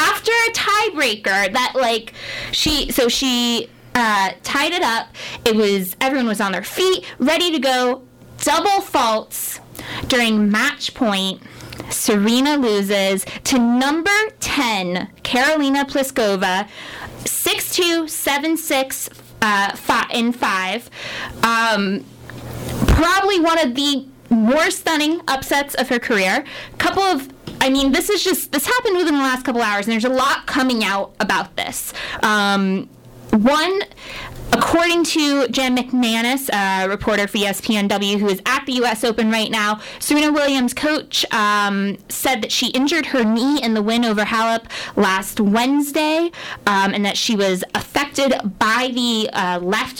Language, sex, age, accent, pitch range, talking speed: English, female, 10-29, American, 215-300 Hz, 140 wpm